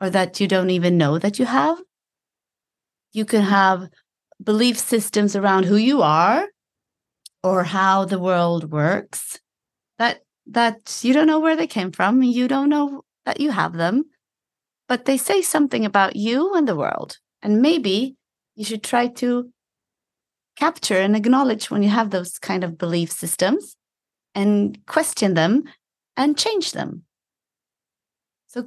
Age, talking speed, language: 30-49, 150 wpm, English